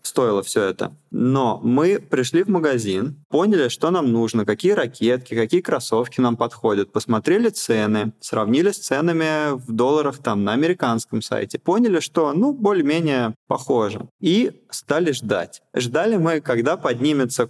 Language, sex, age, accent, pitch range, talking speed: Russian, male, 20-39, native, 125-170 Hz, 140 wpm